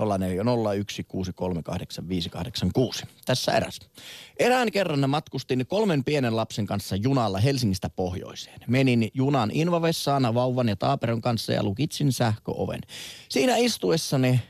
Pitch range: 115-165 Hz